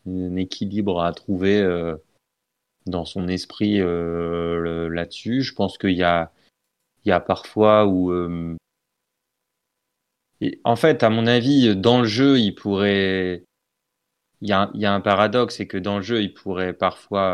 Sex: male